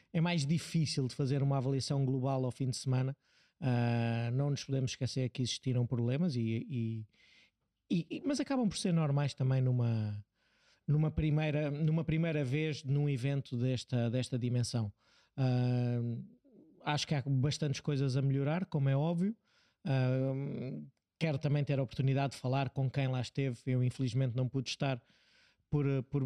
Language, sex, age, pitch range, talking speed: Portuguese, male, 20-39, 125-145 Hz, 140 wpm